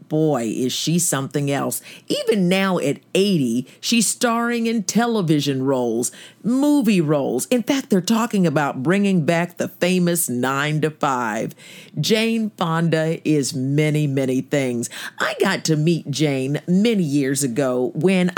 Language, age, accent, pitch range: English, 50-69, American, 145-195 Hz